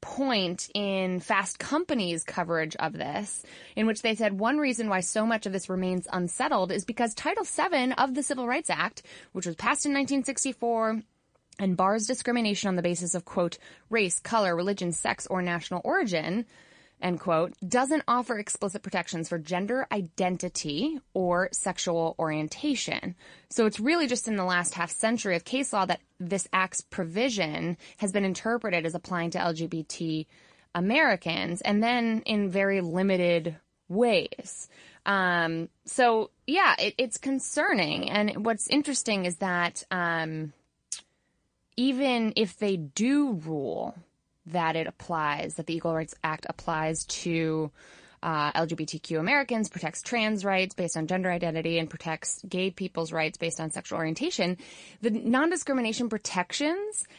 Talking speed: 145 wpm